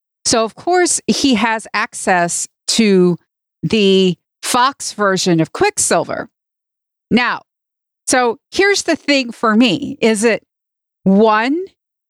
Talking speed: 110 wpm